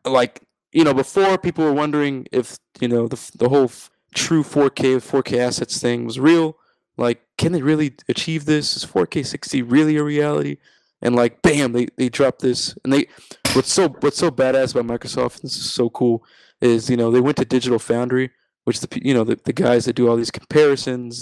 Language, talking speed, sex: English, 210 wpm, male